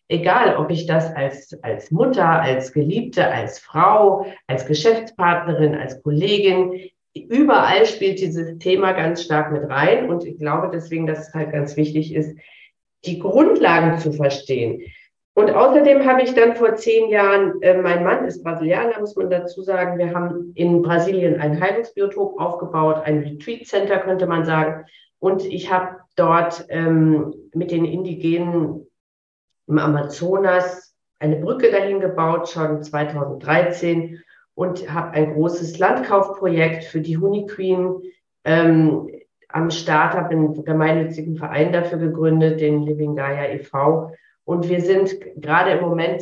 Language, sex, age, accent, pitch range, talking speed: German, female, 40-59, German, 155-185 Hz, 145 wpm